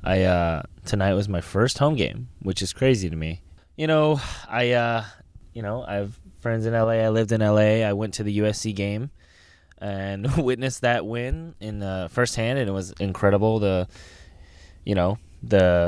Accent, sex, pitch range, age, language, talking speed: American, male, 90-120 Hz, 20-39, English, 190 wpm